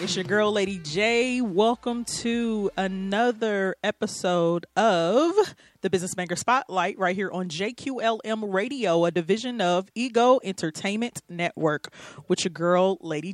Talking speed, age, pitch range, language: 130 wpm, 30-49, 175-220 Hz, English